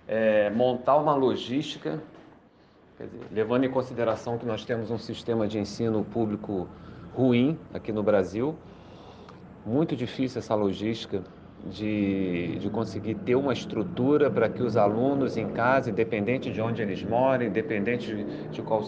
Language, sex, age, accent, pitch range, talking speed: Portuguese, male, 40-59, Brazilian, 100-120 Hz, 145 wpm